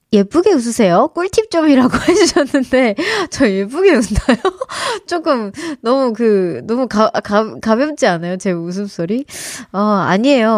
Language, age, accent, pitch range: Korean, 20-39, native, 195-280 Hz